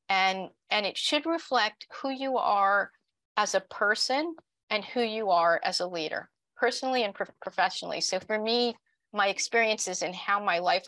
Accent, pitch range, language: American, 180-230 Hz, English